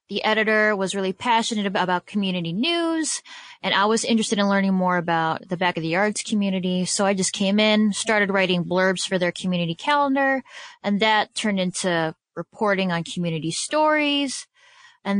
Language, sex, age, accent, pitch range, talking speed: English, female, 10-29, American, 180-215 Hz, 160 wpm